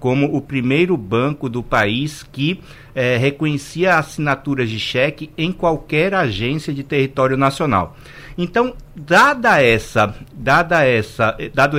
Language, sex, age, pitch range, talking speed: Portuguese, male, 60-79, 115-145 Hz, 100 wpm